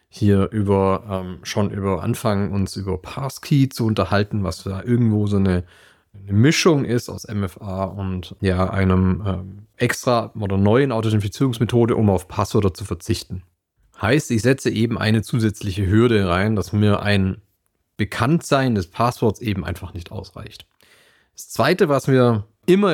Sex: male